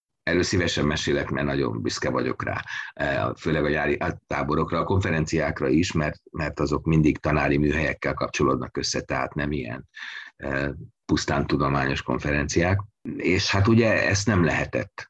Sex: male